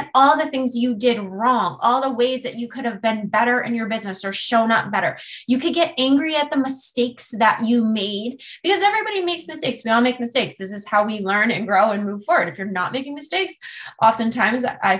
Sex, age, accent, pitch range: female, 20-39, American, 225-295 Hz